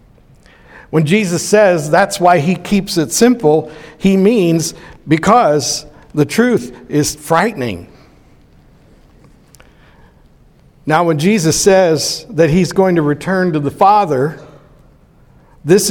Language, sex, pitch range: English, male, 155-205 Hz